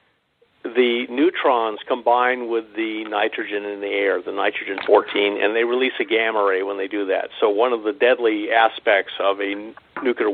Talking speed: 175 wpm